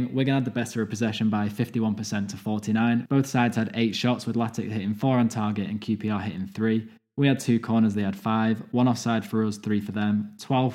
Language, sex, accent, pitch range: English, male, British, 105-115 Hz